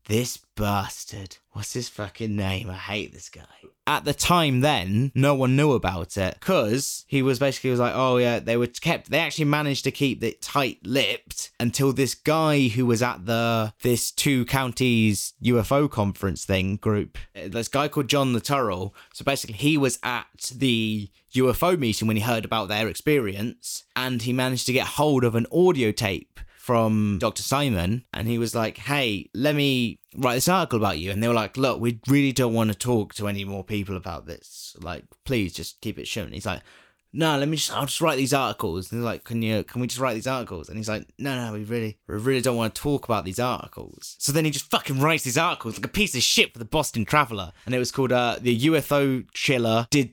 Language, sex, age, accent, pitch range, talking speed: English, male, 20-39, British, 110-140 Hz, 220 wpm